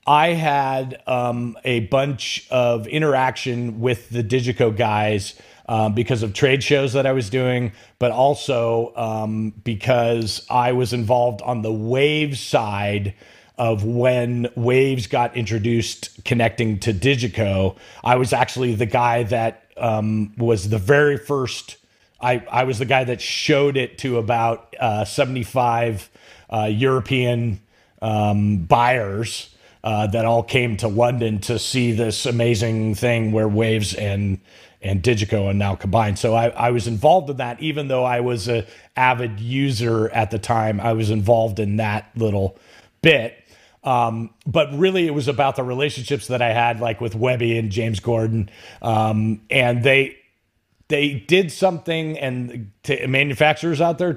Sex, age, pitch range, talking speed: male, 40-59, 110-130 Hz, 150 wpm